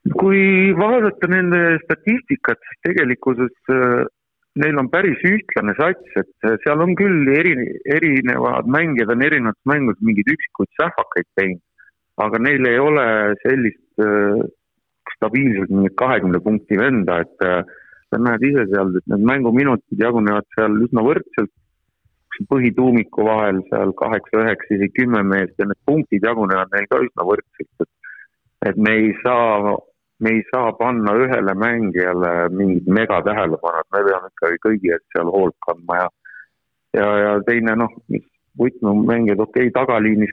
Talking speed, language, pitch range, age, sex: 130 wpm, English, 100-120 Hz, 60-79, male